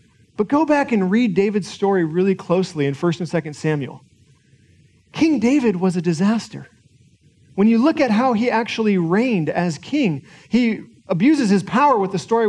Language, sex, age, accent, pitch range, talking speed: English, male, 40-59, American, 180-245 Hz, 175 wpm